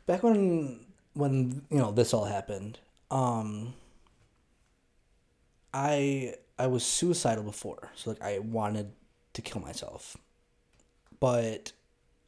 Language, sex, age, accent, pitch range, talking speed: English, male, 20-39, American, 105-125 Hz, 105 wpm